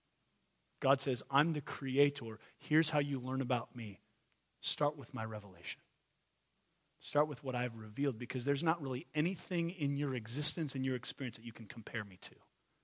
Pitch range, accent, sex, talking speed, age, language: 130-165 Hz, American, male, 175 wpm, 40-59, English